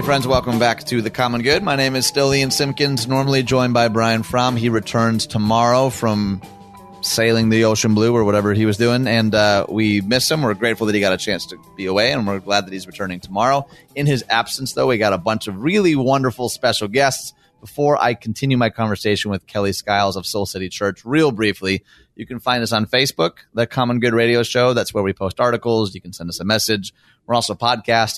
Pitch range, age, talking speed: 105-130 Hz, 30-49, 230 wpm